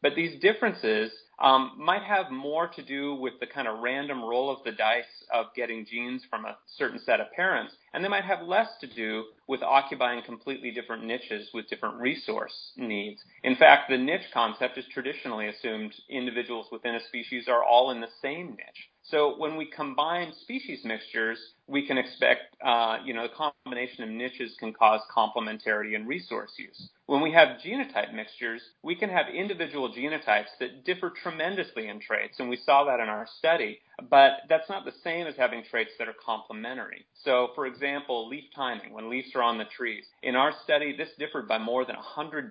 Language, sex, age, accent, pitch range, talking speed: English, male, 30-49, American, 115-150 Hz, 190 wpm